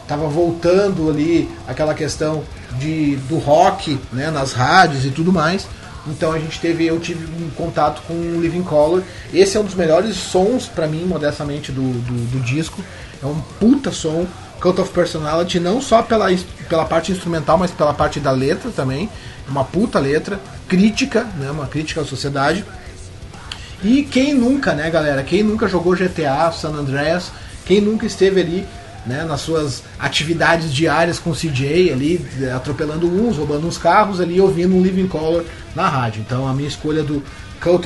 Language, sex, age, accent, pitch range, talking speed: Portuguese, male, 30-49, Brazilian, 145-185 Hz, 170 wpm